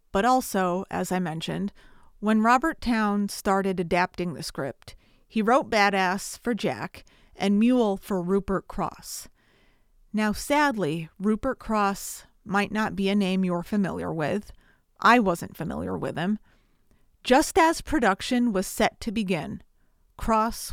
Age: 40-59